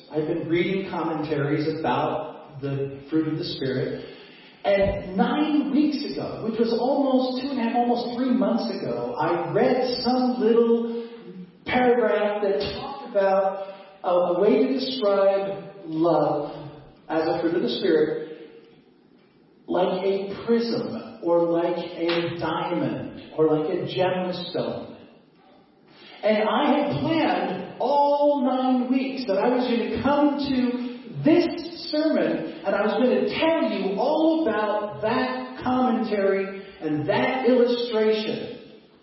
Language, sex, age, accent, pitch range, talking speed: English, male, 40-59, American, 185-255 Hz, 130 wpm